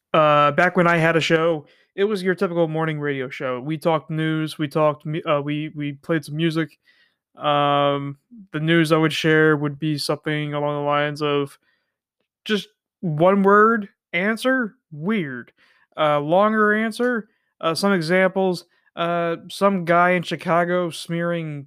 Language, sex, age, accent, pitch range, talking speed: English, male, 20-39, American, 150-175 Hz, 150 wpm